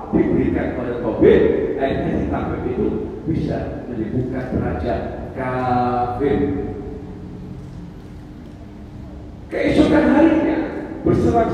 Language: Indonesian